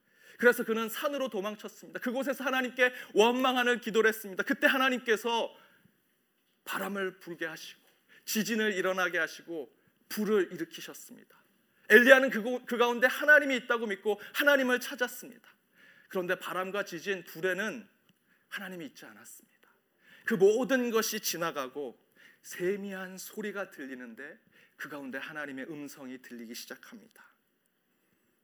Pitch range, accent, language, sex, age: 190-245 Hz, native, Korean, male, 40-59